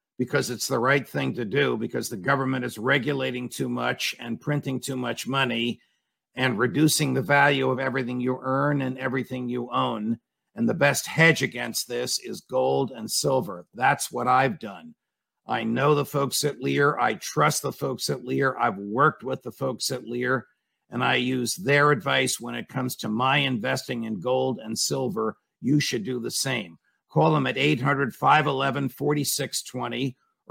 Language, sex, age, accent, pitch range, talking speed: English, male, 50-69, American, 125-145 Hz, 175 wpm